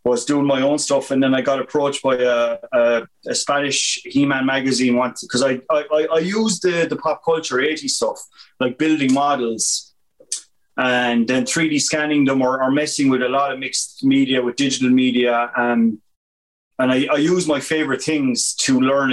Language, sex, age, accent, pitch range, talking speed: English, male, 30-49, Irish, 120-150 Hz, 190 wpm